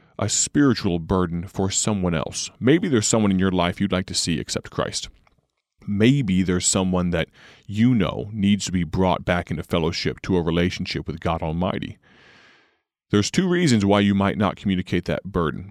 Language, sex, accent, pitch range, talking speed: English, male, American, 85-105 Hz, 180 wpm